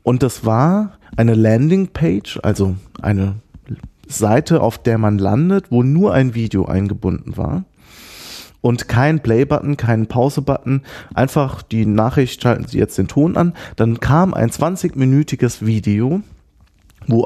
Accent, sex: German, male